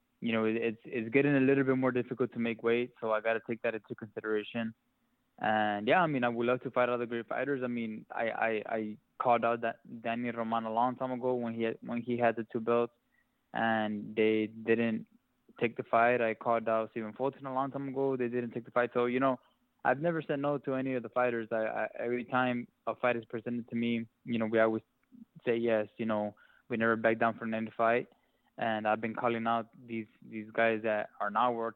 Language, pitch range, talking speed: English, 110-120 Hz, 235 wpm